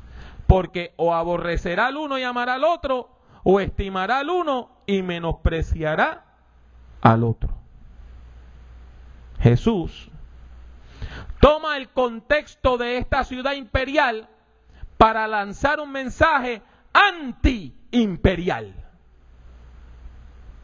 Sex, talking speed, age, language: male, 85 wpm, 40-59, English